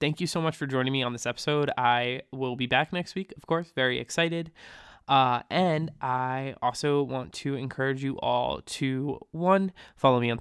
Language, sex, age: English, male, 20-39